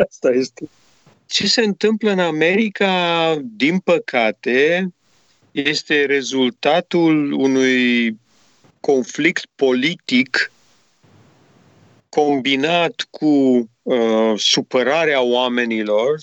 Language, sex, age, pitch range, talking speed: Romanian, male, 50-69, 125-175 Hz, 65 wpm